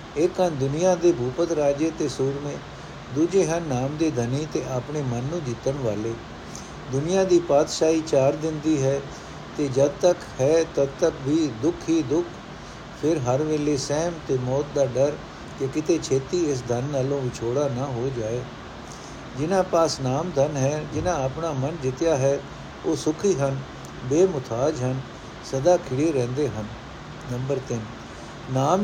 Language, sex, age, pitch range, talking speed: Punjabi, male, 60-79, 130-160 Hz, 150 wpm